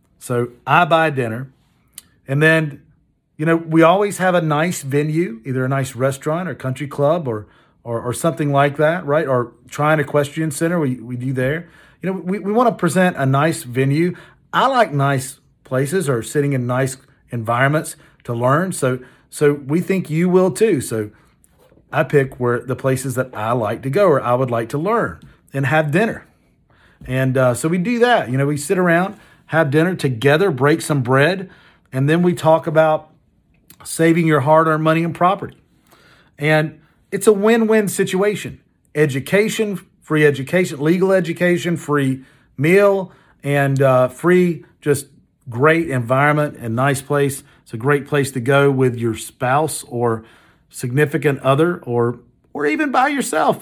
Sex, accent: male, American